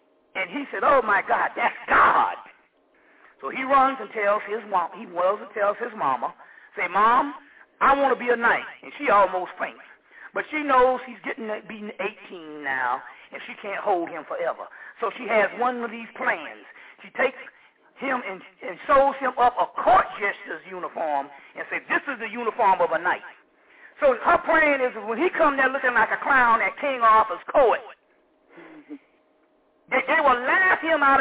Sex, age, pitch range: male, 40-59, 215-295 Hz